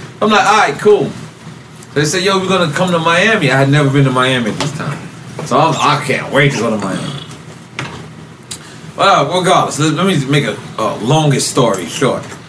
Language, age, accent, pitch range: English, 30-49, American, 140-175 Hz